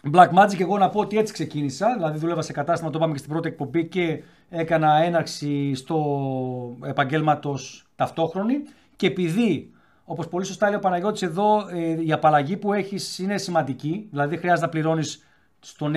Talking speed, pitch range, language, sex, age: 165 wpm, 140-195 Hz, Greek, male, 40-59